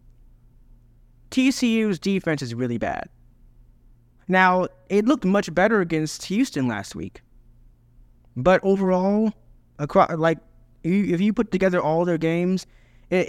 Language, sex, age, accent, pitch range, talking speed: English, male, 20-39, American, 125-185 Hz, 115 wpm